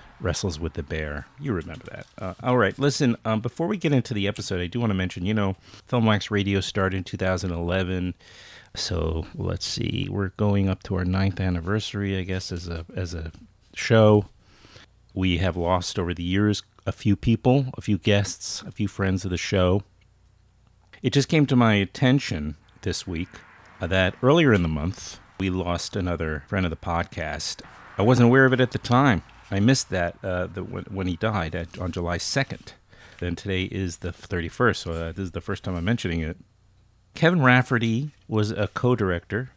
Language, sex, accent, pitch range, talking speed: English, male, American, 90-115 Hz, 190 wpm